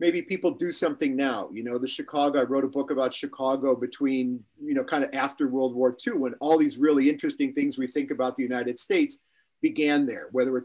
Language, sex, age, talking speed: English, male, 40-59, 225 wpm